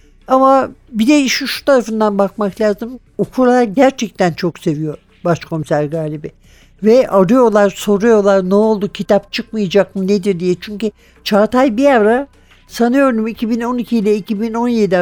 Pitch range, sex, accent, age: 175-225 Hz, male, native, 60-79